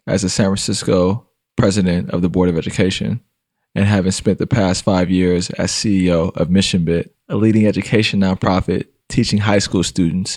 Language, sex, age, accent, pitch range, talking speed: English, male, 20-39, American, 95-105 Hz, 170 wpm